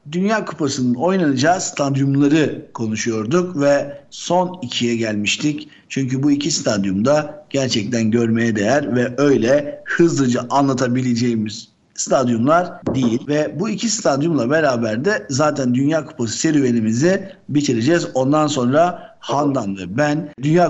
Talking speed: 115 wpm